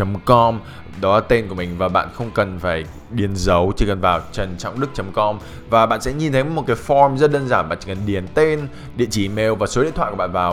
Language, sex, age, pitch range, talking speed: Vietnamese, male, 20-39, 100-140 Hz, 245 wpm